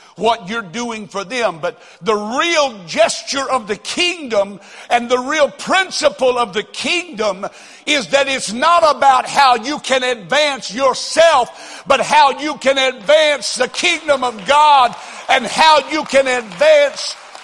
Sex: male